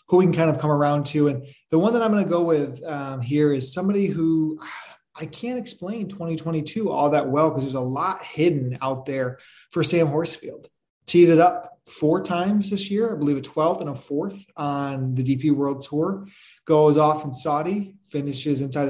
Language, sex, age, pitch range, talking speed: English, male, 20-39, 135-175 Hz, 200 wpm